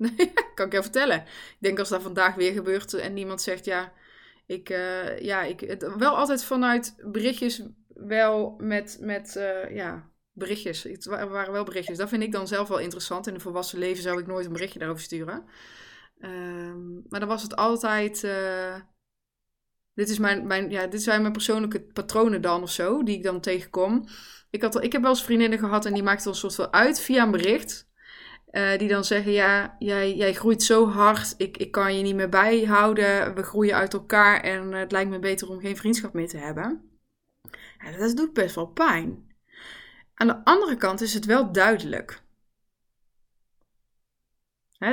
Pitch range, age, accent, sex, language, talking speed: 185-220 Hz, 20-39, Dutch, female, Dutch, 195 wpm